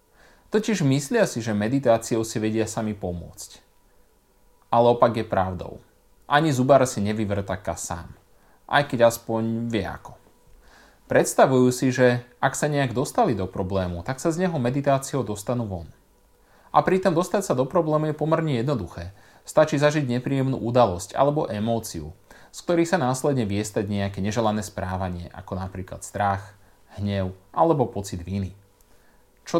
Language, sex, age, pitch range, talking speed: Slovak, male, 30-49, 100-160 Hz, 145 wpm